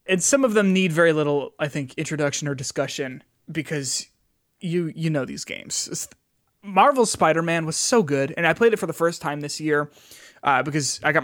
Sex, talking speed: male, 200 wpm